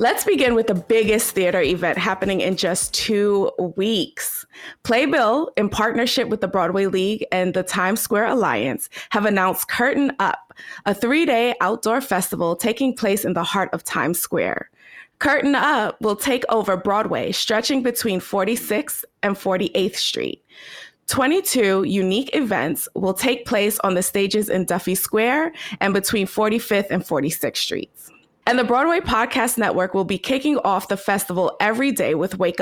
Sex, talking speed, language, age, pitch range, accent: female, 155 wpm, English, 20-39, 190-245 Hz, American